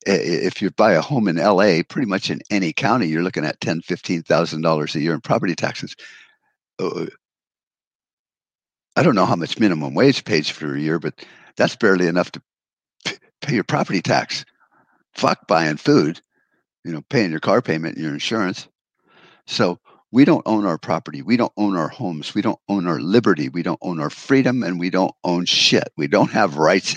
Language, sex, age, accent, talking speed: English, male, 60-79, American, 195 wpm